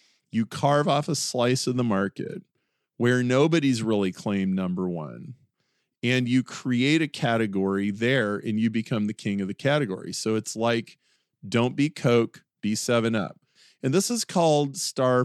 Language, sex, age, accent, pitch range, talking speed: English, male, 40-59, American, 110-135 Hz, 160 wpm